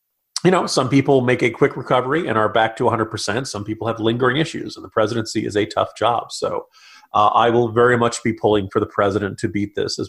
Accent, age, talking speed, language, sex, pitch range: American, 40-59, 240 wpm, English, male, 115-160 Hz